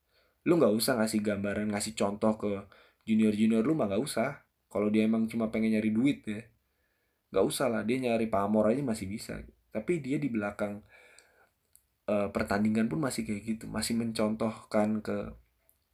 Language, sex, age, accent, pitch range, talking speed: Indonesian, male, 20-39, native, 90-110 Hz, 165 wpm